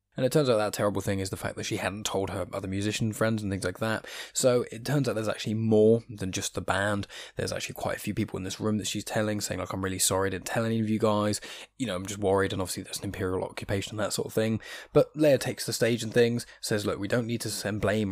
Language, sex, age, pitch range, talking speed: English, male, 20-39, 95-115 Hz, 290 wpm